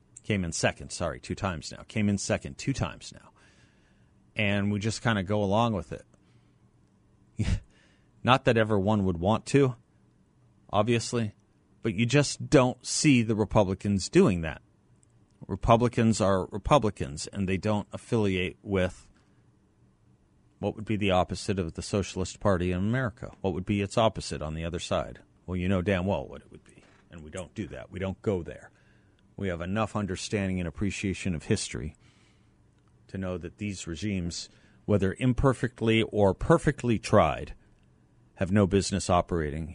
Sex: male